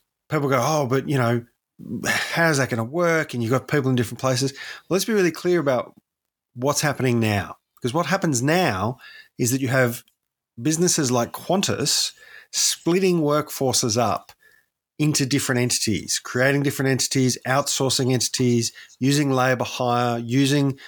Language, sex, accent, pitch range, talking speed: English, male, Australian, 115-150 Hz, 155 wpm